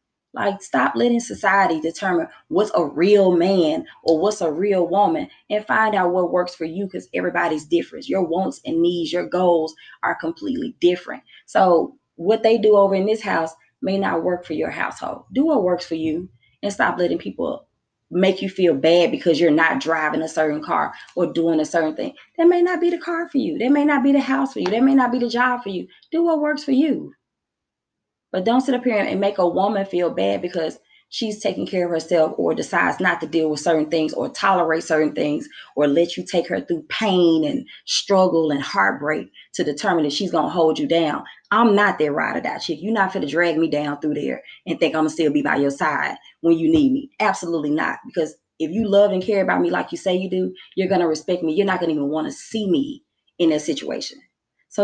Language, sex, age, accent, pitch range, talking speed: English, female, 20-39, American, 165-230 Hz, 235 wpm